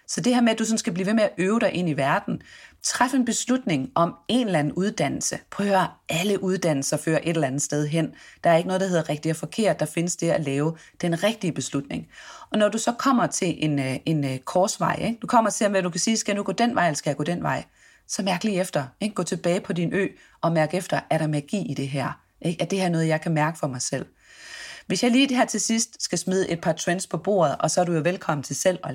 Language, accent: Danish, native